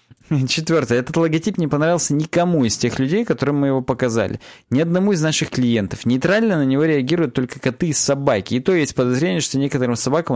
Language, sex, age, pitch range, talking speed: Russian, male, 20-39, 125-165 Hz, 190 wpm